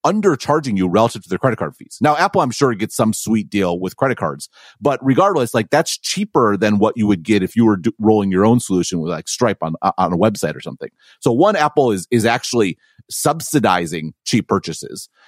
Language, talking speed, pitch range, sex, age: English, 215 wpm, 105-150 Hz, male, 30-49